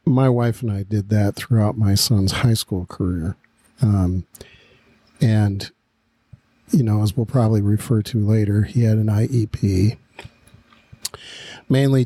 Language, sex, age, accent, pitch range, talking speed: English, male, 50-69, American, 105-120 Hz, 135 wpm